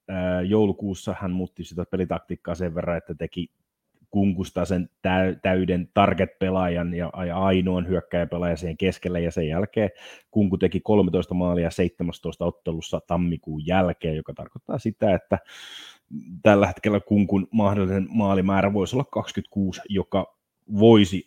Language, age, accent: Finnish, 30-49, native